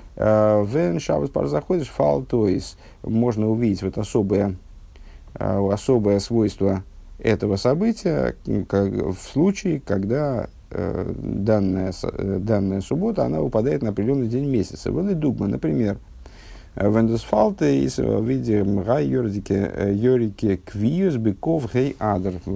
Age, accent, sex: 50-69, native, male